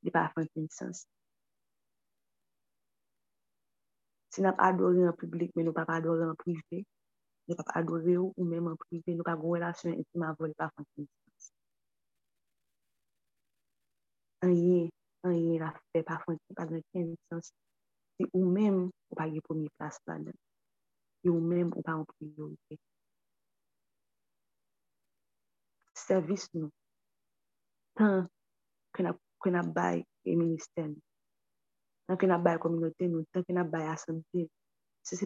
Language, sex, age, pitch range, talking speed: French, female, 30-49, 160-180 Hz, 60 wpm